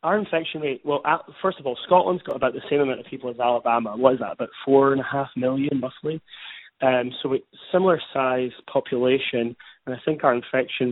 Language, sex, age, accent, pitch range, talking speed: English, male, 20-39, British, 120-140 Hz, 215 wpm